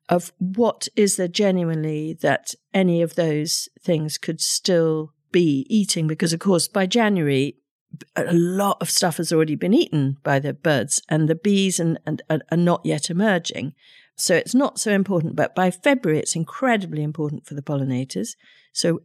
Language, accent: English, British